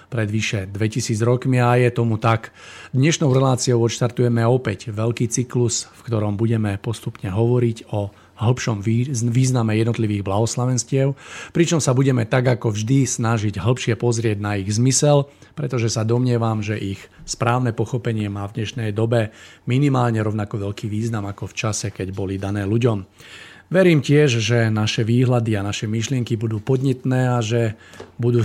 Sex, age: male, 40-59